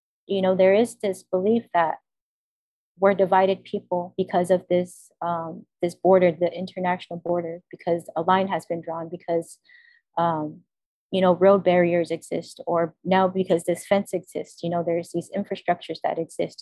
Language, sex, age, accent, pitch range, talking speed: English, female, 30-49, American, 170-190 Hz, 165 wpm